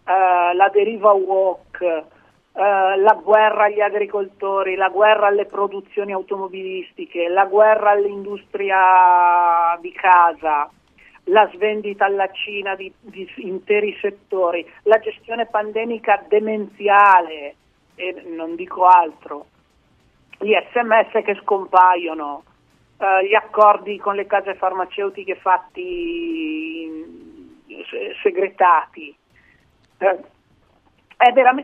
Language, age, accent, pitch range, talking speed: Italian, 50-69, native, 185-230 Hz, 95 wpm